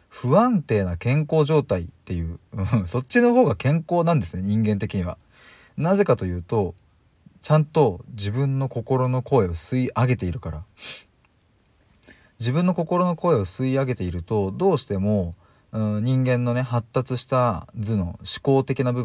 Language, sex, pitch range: Japanese, male, 95-135 Hz